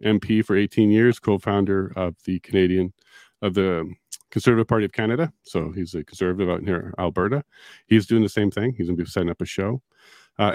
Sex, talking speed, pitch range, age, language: male, 200 wpm, 90-115 Hz, 40-59, English